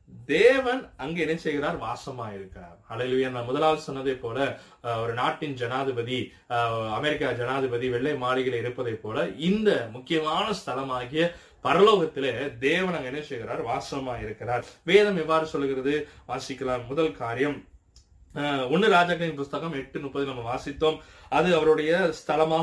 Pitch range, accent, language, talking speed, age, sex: 130-165 Hz, native, Tamil, 120 wpm, 20-39, male